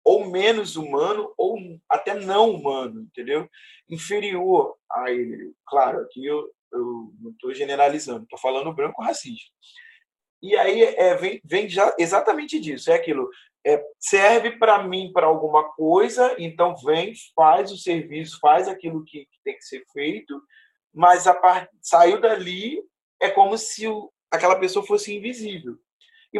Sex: male